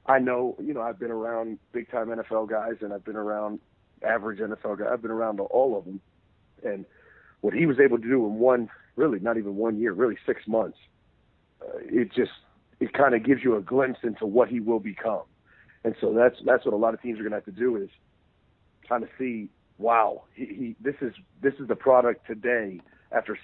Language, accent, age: English, American, 40-59